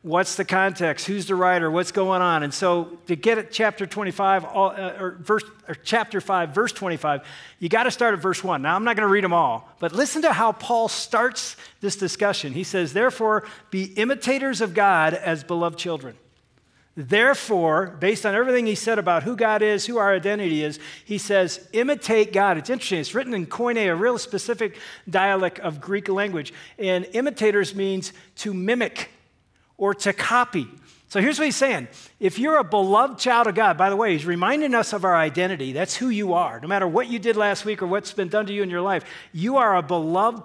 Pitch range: 180-225 Hz